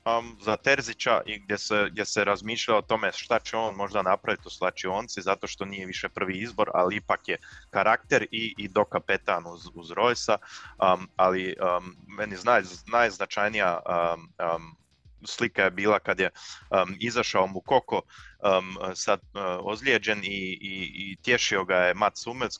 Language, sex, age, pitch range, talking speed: Croatian, male, 20-39, 90-105 Hz, 160 wpm